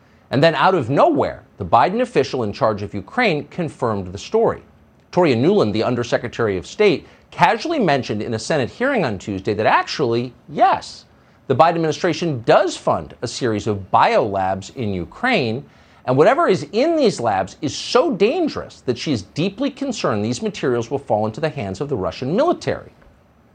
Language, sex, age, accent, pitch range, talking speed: English, male, 50-69, American, 105-170 Hz, 175 wpm